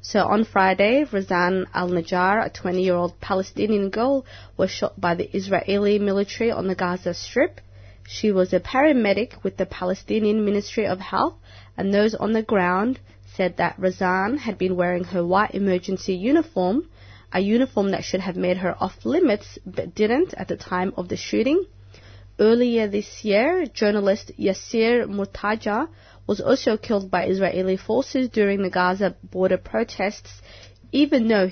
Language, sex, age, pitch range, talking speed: English, female, 20-39, 180-215 Hz, 160 wpm